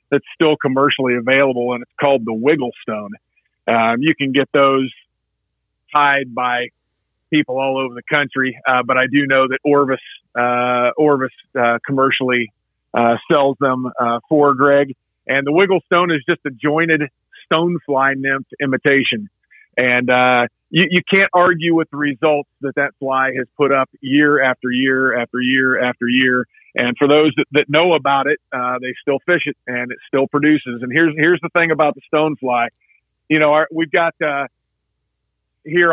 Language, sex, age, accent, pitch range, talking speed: English, male, 40-59, American, 125-155 Hz, 175 wpm